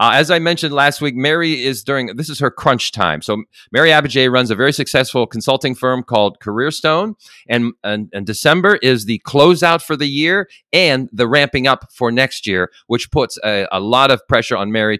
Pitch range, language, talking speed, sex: 110-150 Hz, English, 200 wpm, male